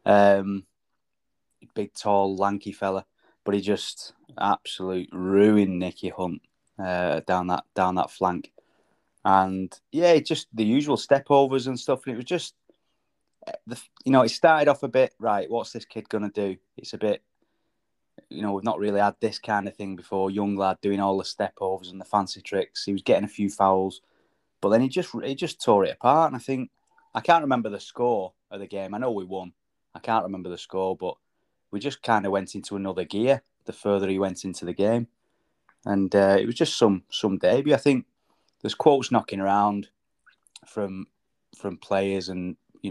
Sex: male